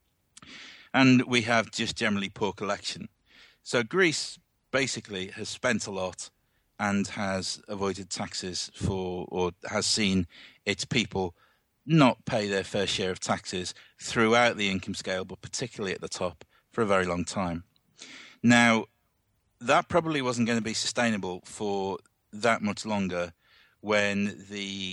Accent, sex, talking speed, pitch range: British, male, 140 wpm, 95-115 Hz